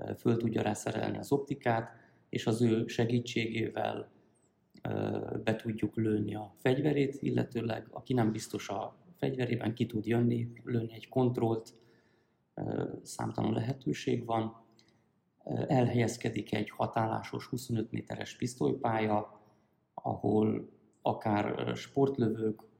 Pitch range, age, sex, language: 110-125 Hz, 30-49, male, Hungarian